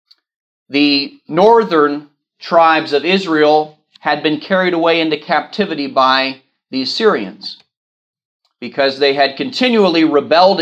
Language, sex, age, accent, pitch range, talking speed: English, male, 40-59, American, 145-185 Hz, 105 wpm